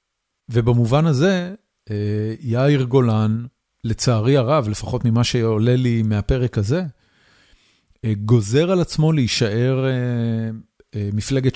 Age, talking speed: 40-59, 90 wpm